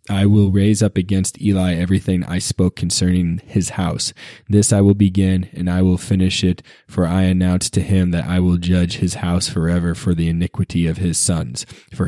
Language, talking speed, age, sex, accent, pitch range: English, 200 wpm, 20-39, male, American, 90-100 Hz